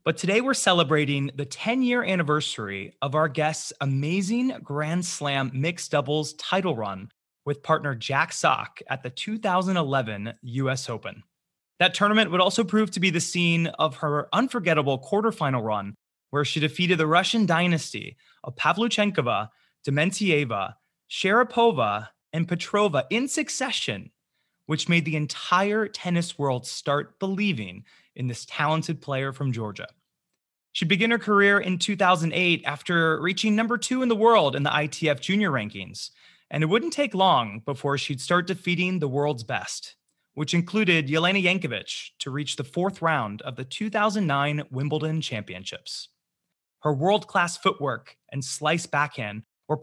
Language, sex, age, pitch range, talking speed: English, male, 20-39, 140-190 Hz, 145 wpm